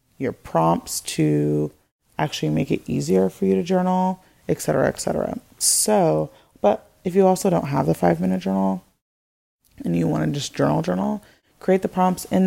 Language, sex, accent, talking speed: English, female, American, 180 wpm